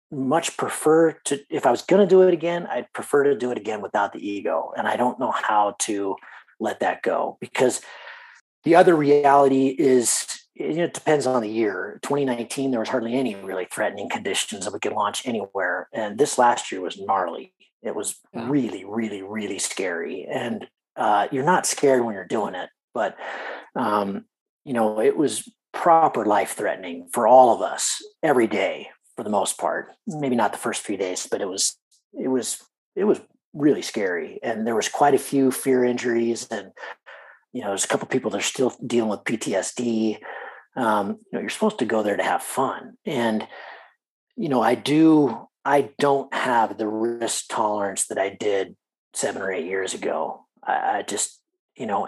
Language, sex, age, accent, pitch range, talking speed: English, male, 30-49, American, 115-170 Hz, 190 wpm